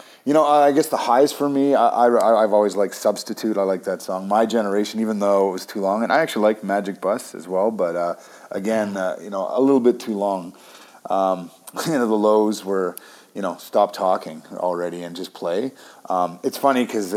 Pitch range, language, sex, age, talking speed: 95-115 Hz, English, male, 30-49, 220 wpm